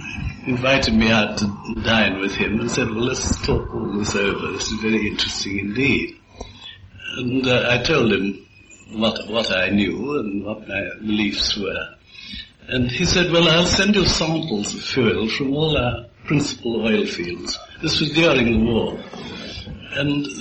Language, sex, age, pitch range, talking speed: English, male, 60-79, 110-160 Hz, 165 wpm